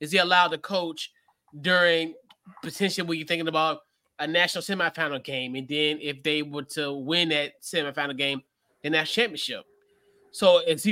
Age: 20-39